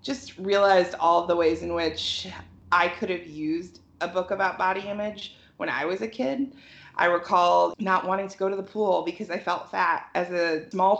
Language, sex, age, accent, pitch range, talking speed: English, female, 30-49, American, 165-200 Hz, 200 wpm